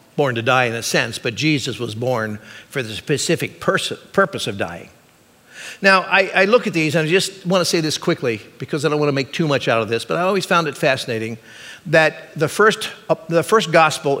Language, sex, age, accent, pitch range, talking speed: English, male, 50-69, American, 135-175 Hz, 225 wpm